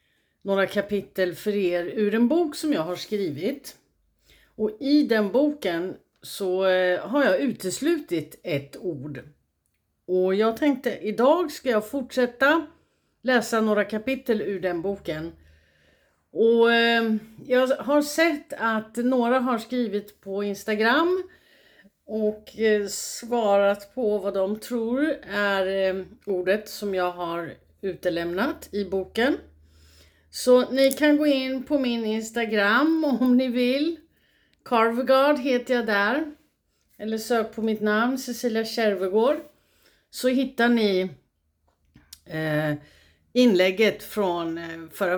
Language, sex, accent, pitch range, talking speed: Swedish, female, native, 190-255 Hz, 115 wpm